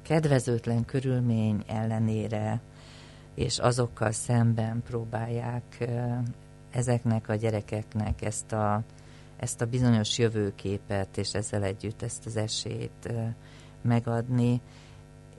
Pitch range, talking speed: 110-125 Hz, 85 wpm